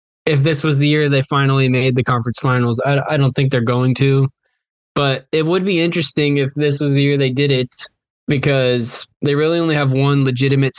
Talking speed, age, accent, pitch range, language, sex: 210 wpm, 10-29, American, 120-140 Hz, English, male